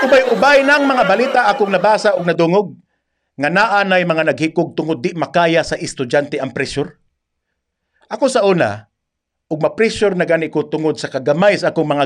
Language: English